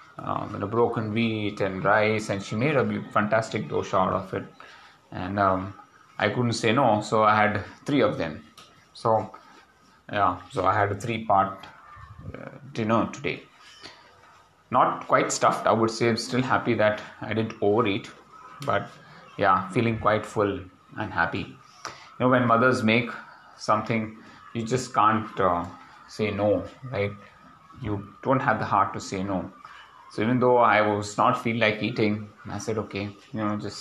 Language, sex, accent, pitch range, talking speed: English, male, Indian, 105-120 Hz, 170 wpm